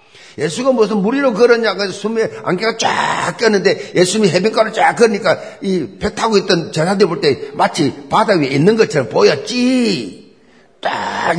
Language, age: Korean, 50-69